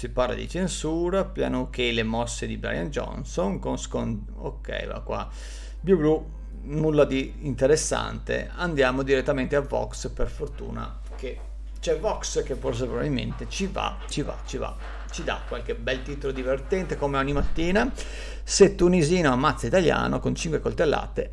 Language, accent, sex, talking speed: Italian, native, male, 160 wpm